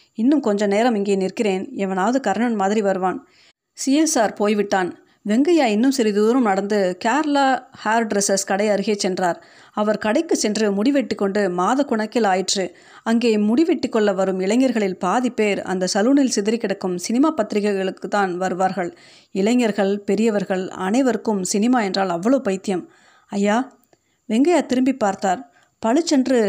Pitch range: 195-250 Hz